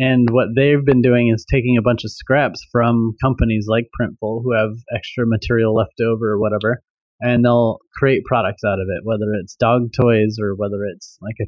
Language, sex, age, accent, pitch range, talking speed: English, male, 30-49, American, 110-125 Hz, 205 wpm